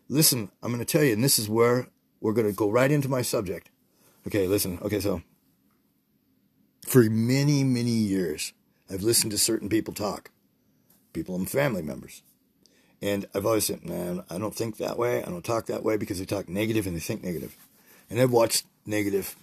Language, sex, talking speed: English, male, 195 wpm